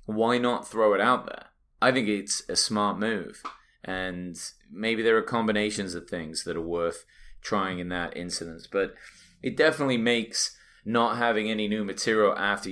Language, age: English, 20-39